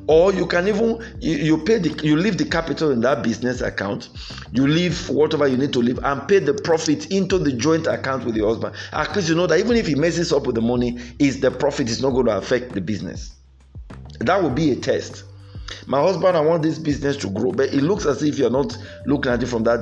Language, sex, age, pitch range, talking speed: English, male, 50-69, 115-165 Hz, 245 wpm